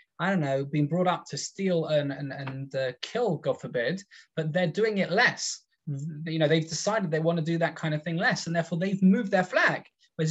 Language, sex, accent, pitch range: English, male, British, 145-190 Hz